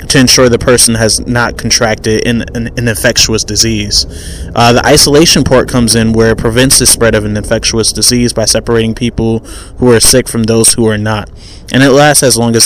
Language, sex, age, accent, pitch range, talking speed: English, male, 20-39, American, 110-130 Hz, 205 wpm